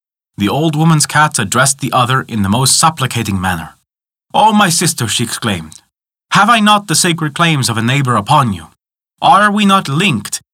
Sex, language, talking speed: male, English, 180 wpm